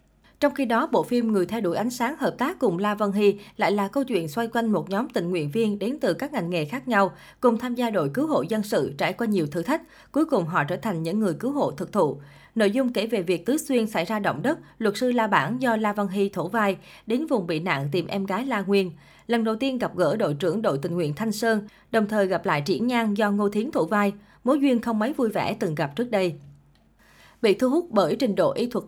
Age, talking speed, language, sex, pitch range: 20-39, 270 wpm, Vietnamese, female, 185-235 Hz